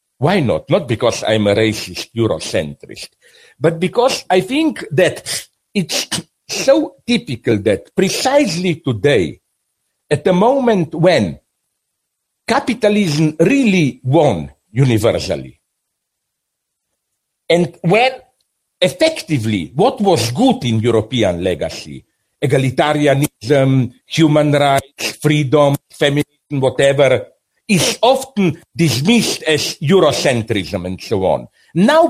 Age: 60-79